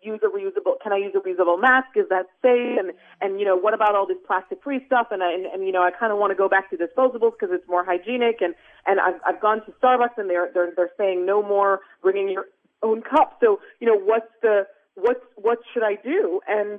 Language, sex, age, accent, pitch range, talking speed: English, female, 30-49, American, 195-245 Hz, 255 wpm